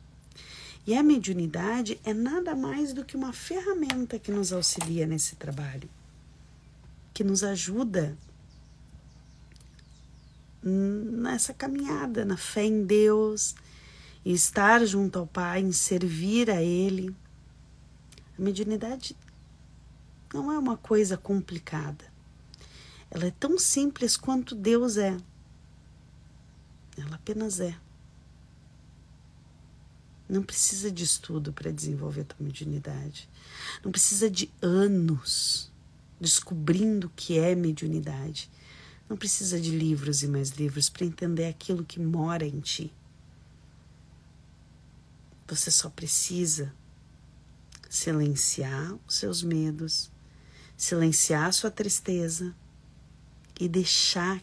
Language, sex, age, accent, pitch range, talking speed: Portuguese, female, 40-59, Brazilian, 155-210 Hz, 105 wpm